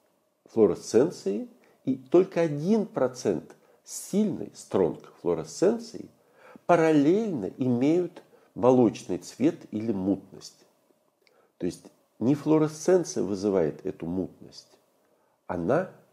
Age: 50-69